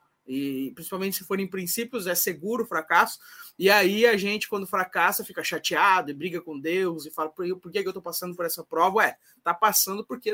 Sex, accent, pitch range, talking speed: male, Brazilian, 160-215 Hz, 210 wpm